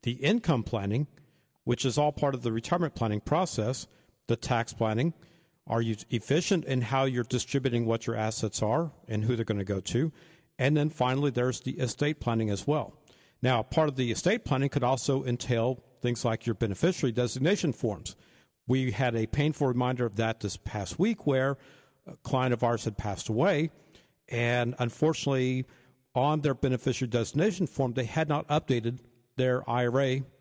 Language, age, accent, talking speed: English, 50-69, American, 170 wpm